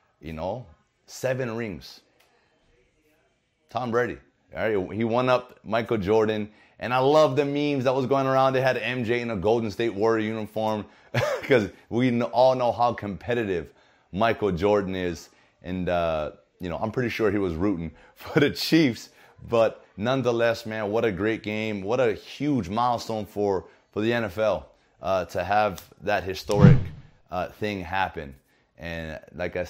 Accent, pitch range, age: American, 95-125 Hz, 30-49